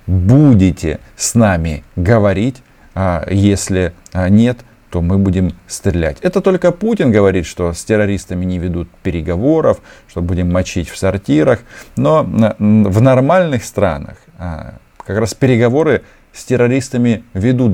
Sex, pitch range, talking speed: male, 90-120 Hz, 120 wpm